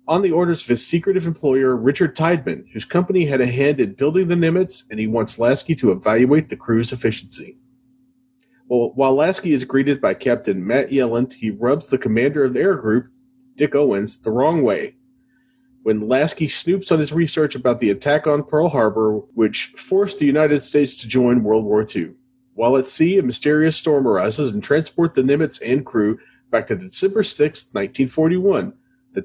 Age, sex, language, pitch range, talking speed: 30-49, male, English, 125-170 Hz, 185 wpm